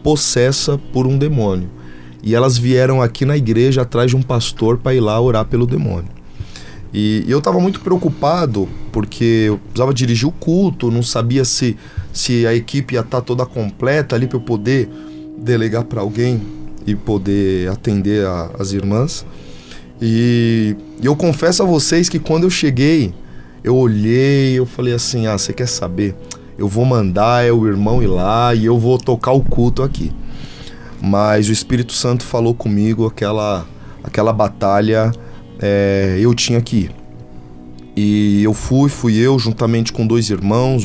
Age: 20-39